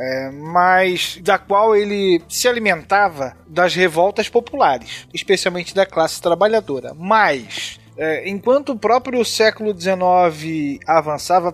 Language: Portuguese